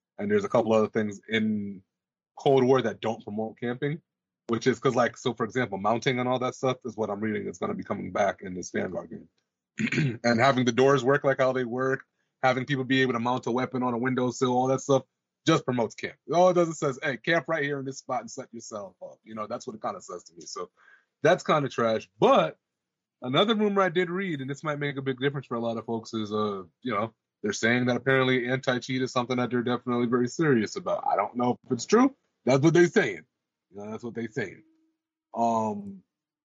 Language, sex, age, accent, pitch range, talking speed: English, male, 30-49, American, 105-135 Hz, 240 wpm